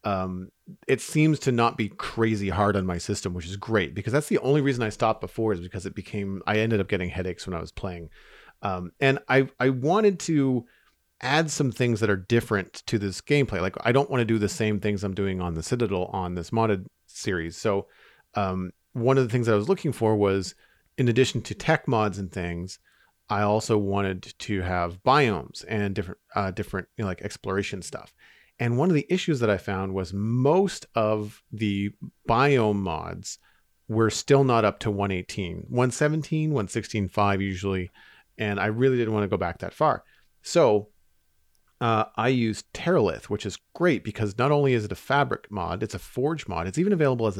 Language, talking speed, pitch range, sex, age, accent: English, 200 wpm, 95-125 Hz, male, 40-59, American